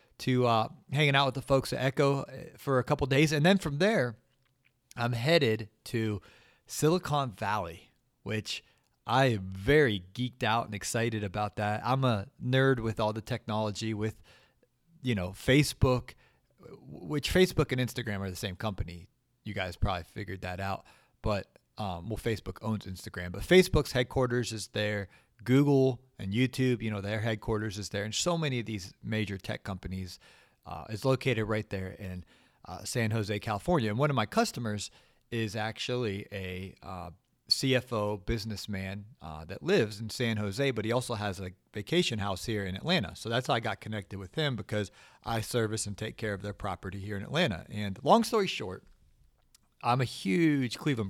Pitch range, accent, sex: 105-130 Hz, American, male